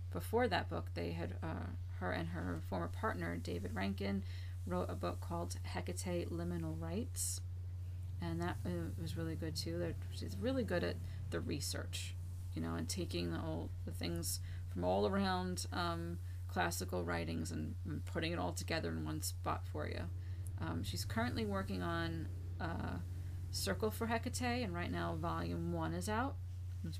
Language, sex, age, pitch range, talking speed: English, female, 30-49, 85-90 Hz, 160 wpm